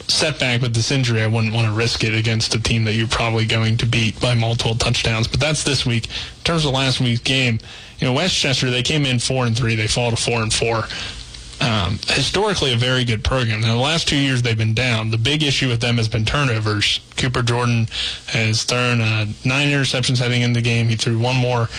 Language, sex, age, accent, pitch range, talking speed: English, male, 20-39, American, 115-125 Hz, 230 wpm